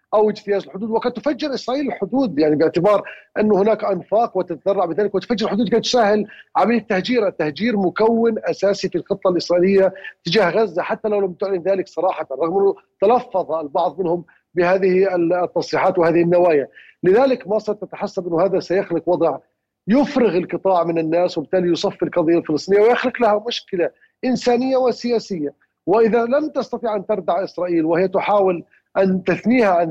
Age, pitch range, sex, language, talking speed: 40-59, 175-215 Hz, male, Arabic, 145 wpm